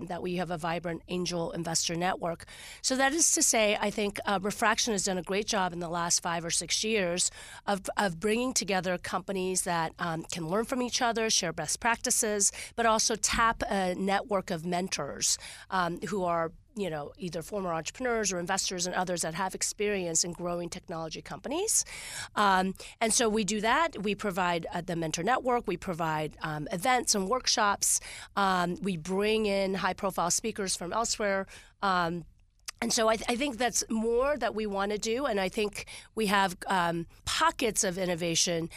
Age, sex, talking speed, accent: 40-59, female, 185 wpm, American